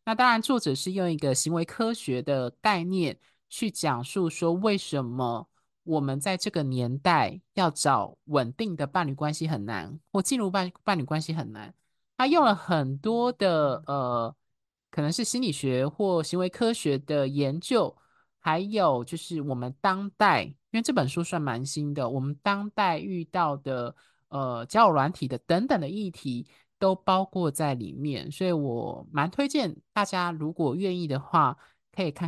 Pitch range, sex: 140-205 Hz, male